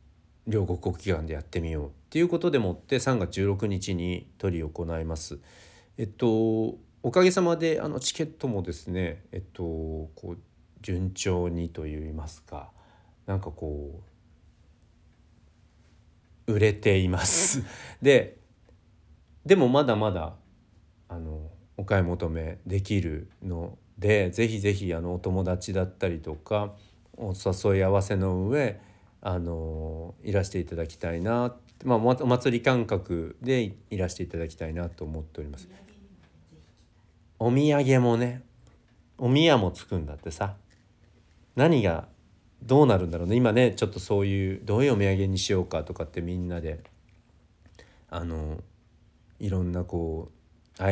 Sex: male